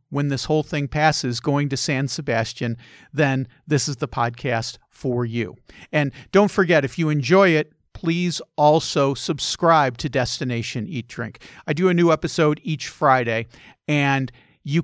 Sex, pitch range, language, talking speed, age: male, 125-155 Hz, English, 160 wpm, 50-69